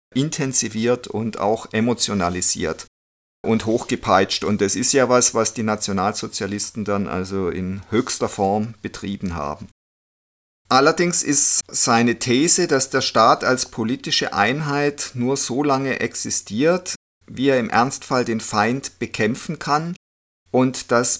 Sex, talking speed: male, 125 wpm